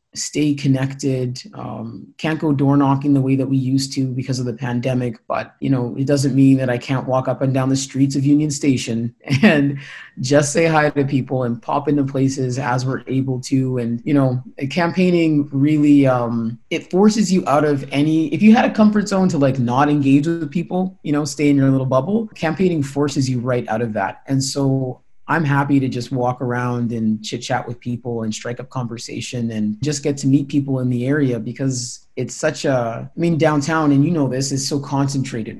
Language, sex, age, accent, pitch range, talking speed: English, male, 30-49, American, 125-145 Hz, 215 wpm